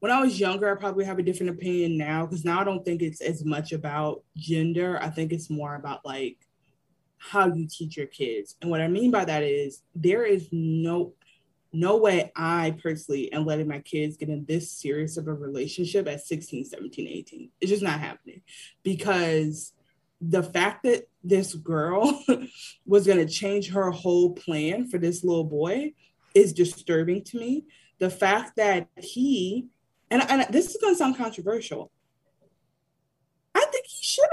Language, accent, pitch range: English, American, 160-210 Hz